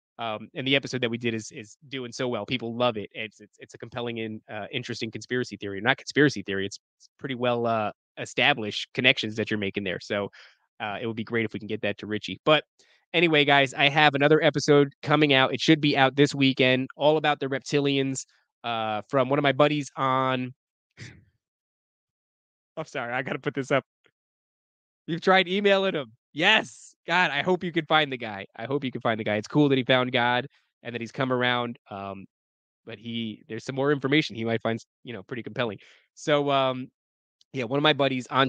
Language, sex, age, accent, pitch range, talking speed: English, male, 20-39, American, 115-140 Hz, 215 wpm